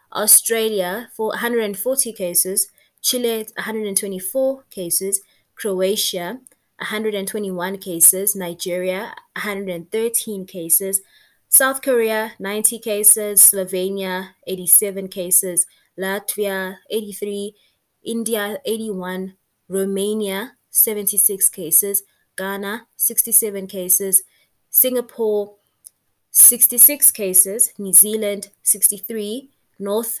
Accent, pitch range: South African, 185-220 Hz